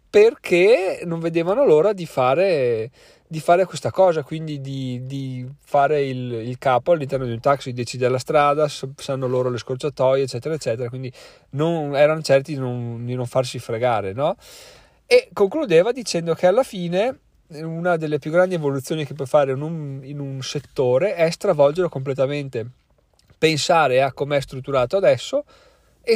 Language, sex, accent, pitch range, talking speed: Italian, male, native, 130-175 Hz, 160 wpm